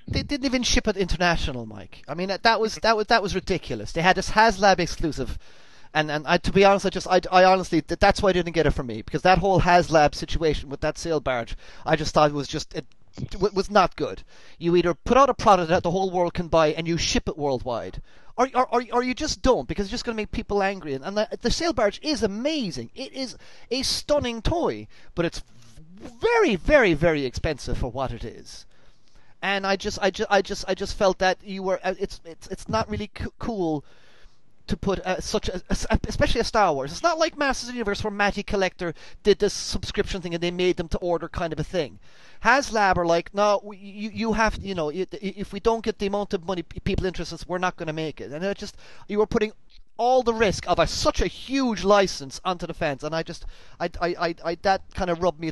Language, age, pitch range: English, 30-49, 160-210 Hz